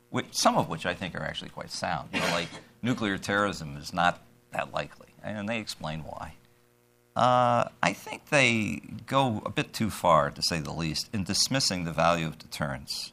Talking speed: 190 wpm